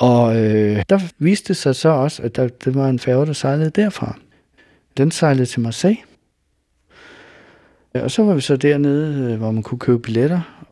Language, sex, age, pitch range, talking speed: Danish, male, 60-79, 110-140 Hz, 180 wpm